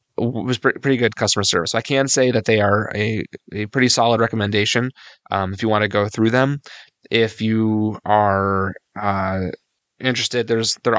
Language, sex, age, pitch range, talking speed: English, male, 20-39, 100-115 Hz, 180 wpm